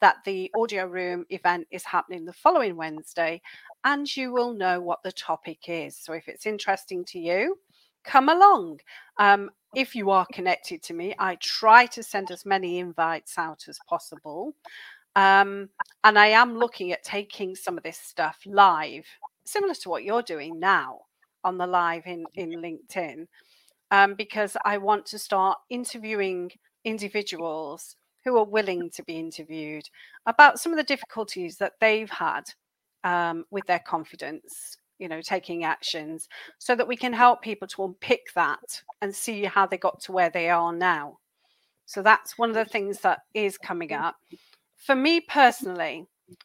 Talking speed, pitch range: 165 wpm, 180-245 Hz